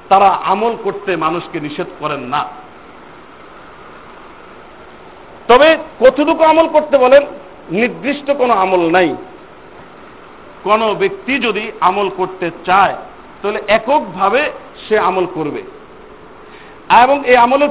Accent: native